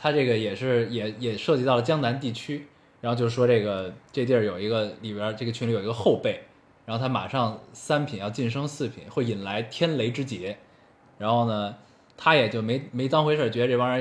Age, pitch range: 20-39, 115-145 Hz